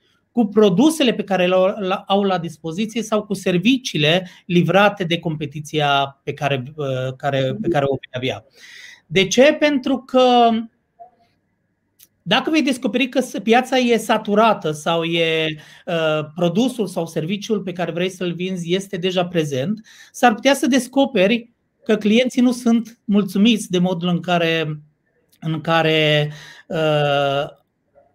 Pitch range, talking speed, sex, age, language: 160-225 Hz, 135 wpm, male, 30-49, Romanian